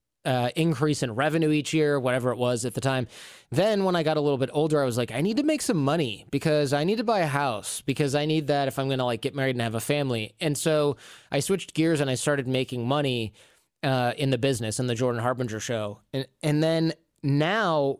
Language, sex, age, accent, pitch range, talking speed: English, male, 20-39, American, 125-150 Hz, 245 wpm